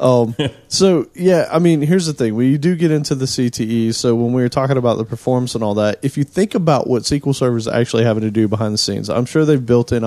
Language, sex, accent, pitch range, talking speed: English, male, American, 115-140 Hz, 270 wpm